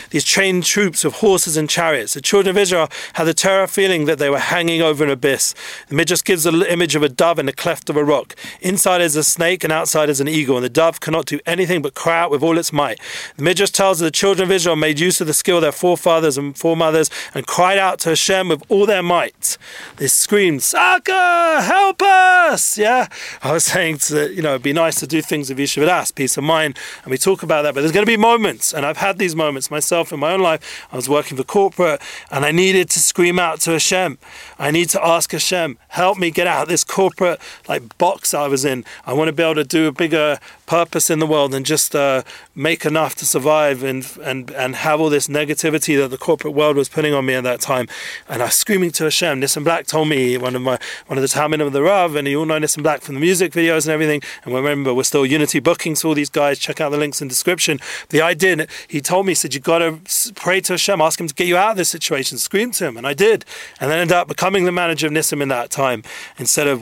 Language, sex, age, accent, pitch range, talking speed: English, male, 40-59, British, 145-175 Hz, 260 wpm